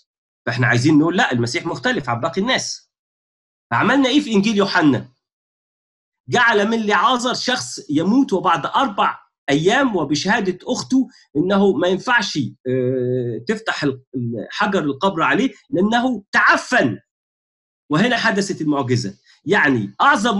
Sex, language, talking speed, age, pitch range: male, Arabic, 110 wpm, 40-59, 130-200 Hz